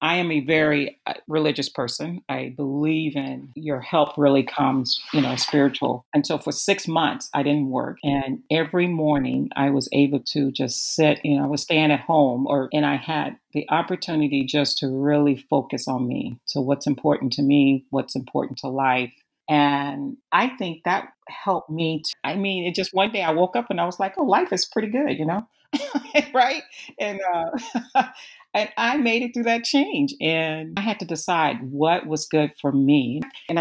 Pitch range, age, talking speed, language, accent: 140-170 Hz, 40-59, 195 wpm, English, American